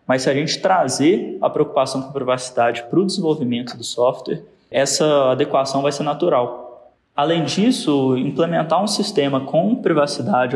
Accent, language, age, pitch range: Brazilian, Portuguese, 20-39, 130-175 Hz